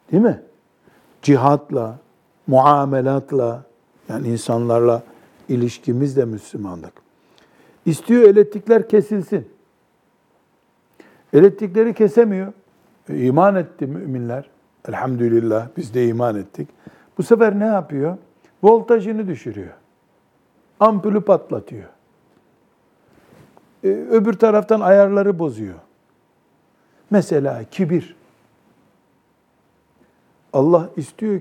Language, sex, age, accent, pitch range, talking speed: Turkish, male, 60-79, native, 140-190 Hz, 75 wpm